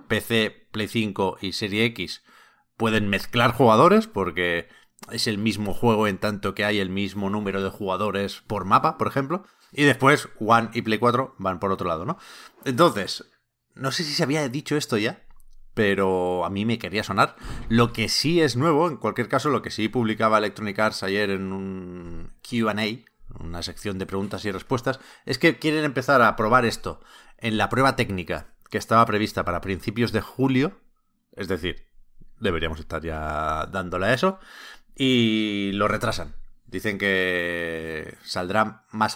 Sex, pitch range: male, 95-125 Hz